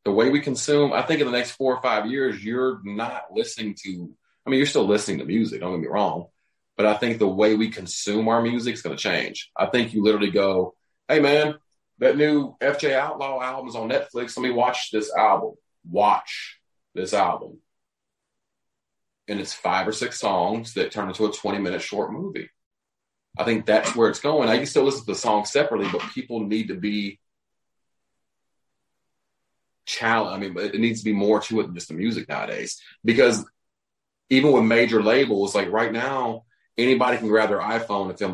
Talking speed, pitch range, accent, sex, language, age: 200 wpm, 105-135 Hz, American, male, English, 30-49